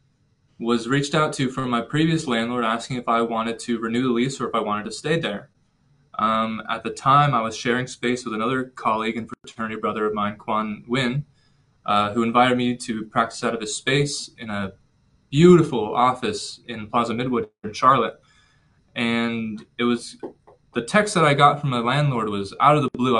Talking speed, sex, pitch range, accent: 195 wpm, male, 115-135 Hz, American